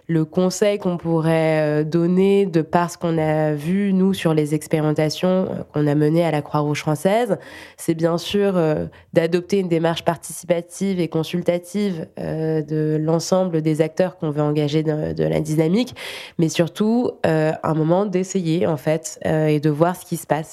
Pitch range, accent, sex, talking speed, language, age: 155-180 Hz, French, female, 175 wpm, French, 20-39